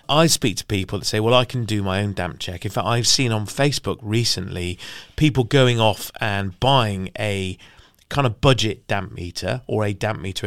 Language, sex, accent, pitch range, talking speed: English, male, British, 95-125 Hz, 205 wpm